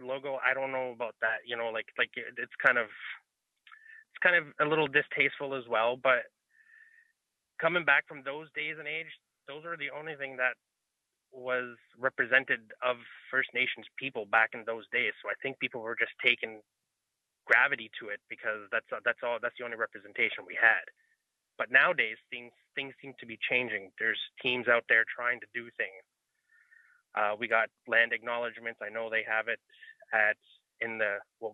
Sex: male